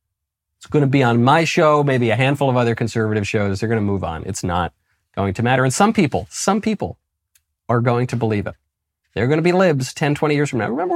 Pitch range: 100-145 Hz